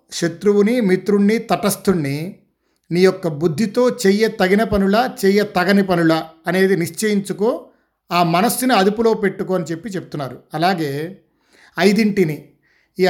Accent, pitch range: native, 170-210 Hz